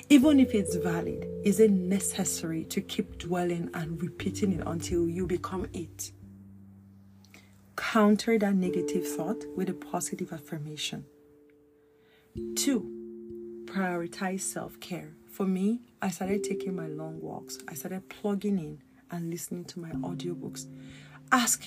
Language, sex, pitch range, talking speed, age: English, female, 145-200 Hz, 125 wpm, 40-59